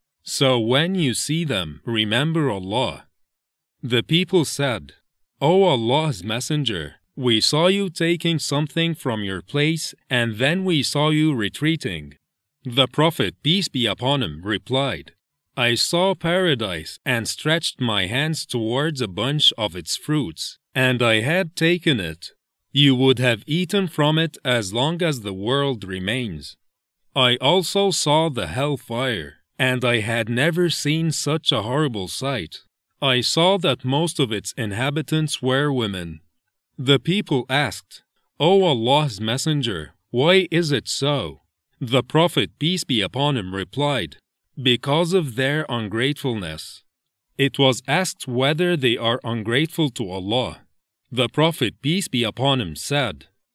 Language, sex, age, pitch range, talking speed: English, male, 40-59, 115-155 Hz, 140 wpm